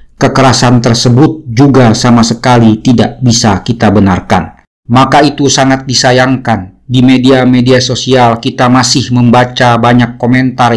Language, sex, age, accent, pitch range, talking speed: Indonesian, male, 50-69, native, 115-130 Hz, 115 wpm